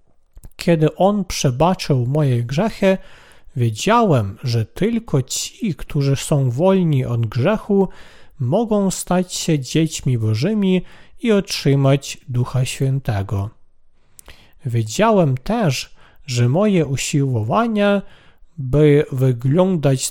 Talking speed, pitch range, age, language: 90 wpm, 125-190 Hz, 40-59, Polish